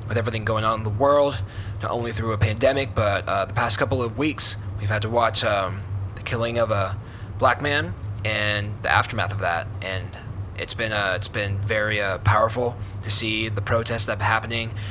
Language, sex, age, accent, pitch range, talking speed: English, male, 20-39, American, 100-110 Hz, 205 wpm